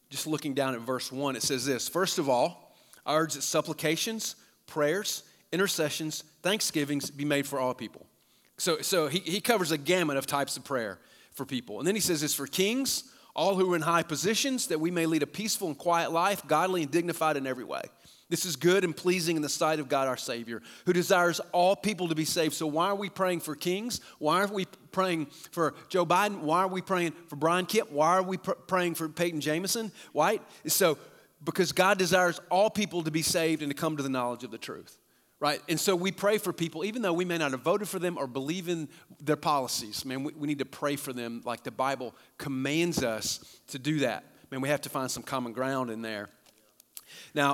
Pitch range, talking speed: 140-180 Hz, 225 wpm